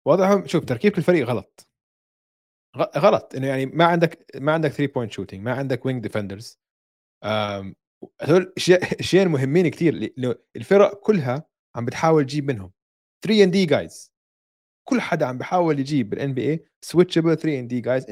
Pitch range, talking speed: 110-150 Hz, 155 wpm